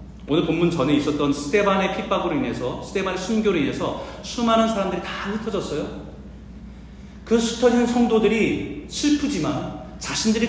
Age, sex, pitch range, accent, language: 40-59, male, 165-235 Hz, native, Korean